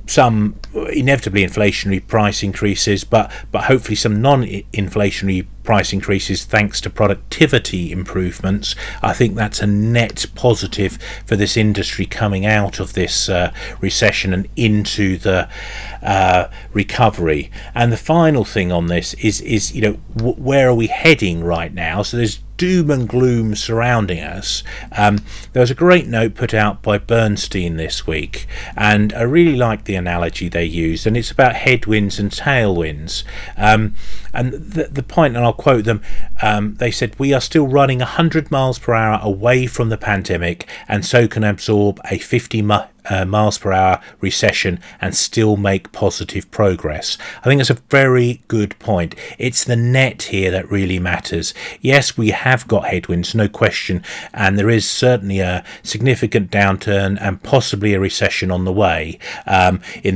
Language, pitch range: English, 95-120 Hz